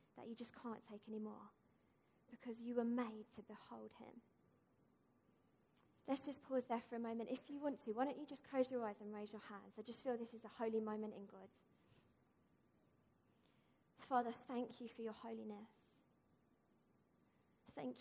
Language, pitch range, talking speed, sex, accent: English, 220-250 Hz, 175 wpm, female, British